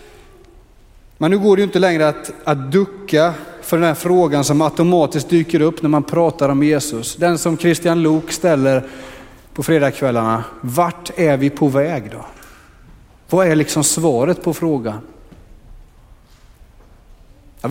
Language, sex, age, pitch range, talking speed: Swedish, male, 30-49, 140-180 Hz, 145 wpm